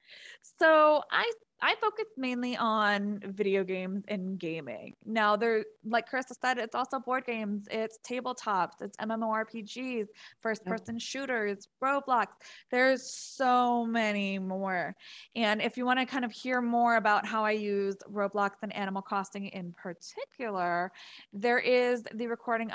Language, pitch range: English, 205-255 Hz